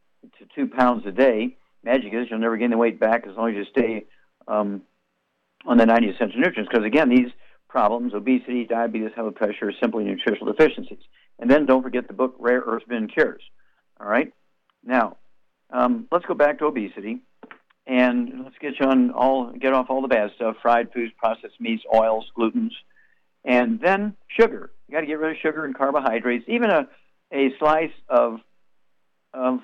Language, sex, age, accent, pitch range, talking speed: English, male, 60-79, American, 115-135 Hz, 180 wpm